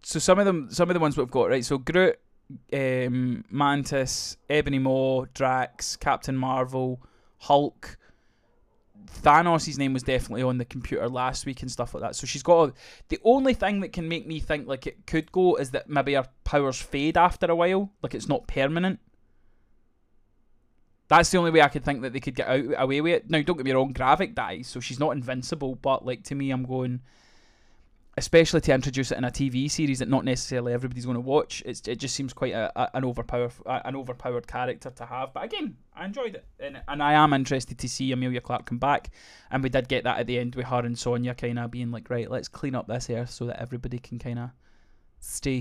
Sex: male